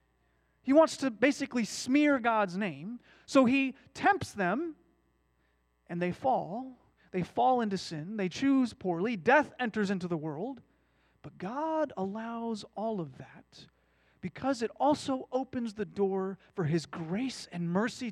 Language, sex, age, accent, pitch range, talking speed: English, male, 30-49, American, 185-270 Hz, 140 wpm